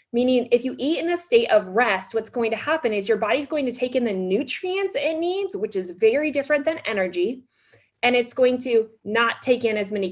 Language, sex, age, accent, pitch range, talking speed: English, female, 20-39, American, 205-275 Hz, 230 wpm